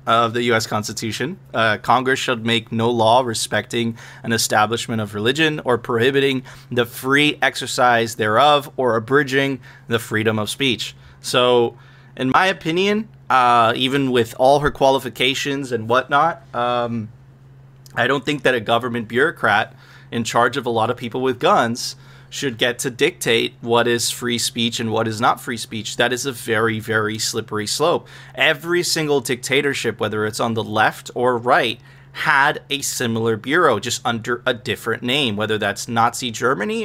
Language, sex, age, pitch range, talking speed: English, male, 30-49, 115-135 Hz, 165 wpm